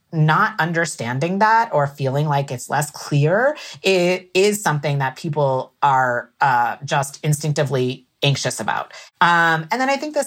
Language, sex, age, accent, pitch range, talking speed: English, female, 30-49, American, 135-175 Hz, 150 wpm